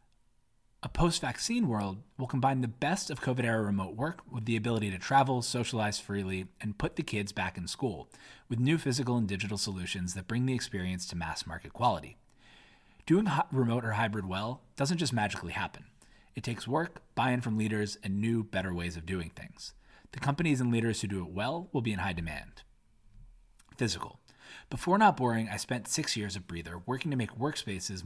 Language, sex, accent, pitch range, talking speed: English, male, American, 100-130 Hz, 190 wpm